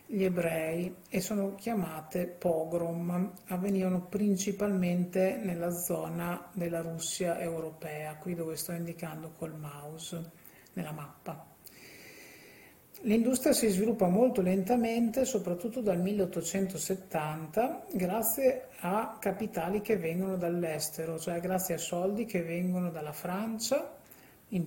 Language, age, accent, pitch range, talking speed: Italian, 50-69, native, 165-195 Hz, 105 wpm